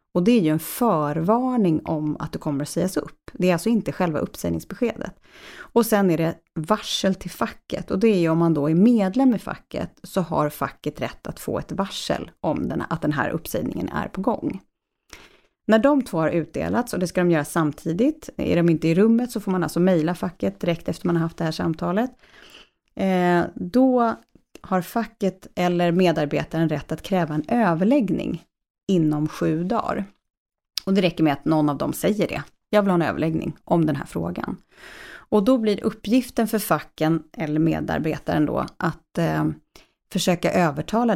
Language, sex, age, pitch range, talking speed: Swedish, female, 30-49, 155-215 Hz, 190 wpm